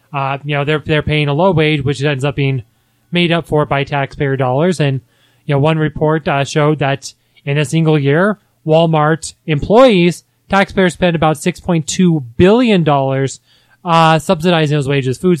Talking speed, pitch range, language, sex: 170 wpm, 140-180 Hz, English, male